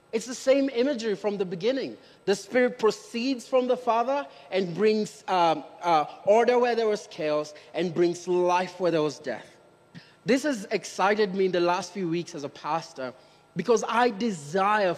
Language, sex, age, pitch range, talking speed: English, male, 30-49, 170-215 Hz, 175 wpm